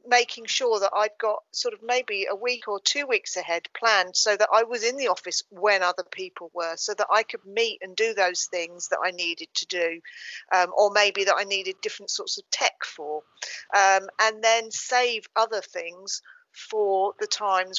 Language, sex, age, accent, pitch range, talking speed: English, female, 40-59, British, 190-250 Hz, 200 wpm